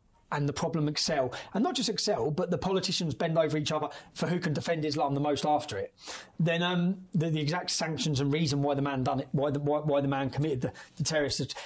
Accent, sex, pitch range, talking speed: British, male, 150-190 Hz, 245 wpm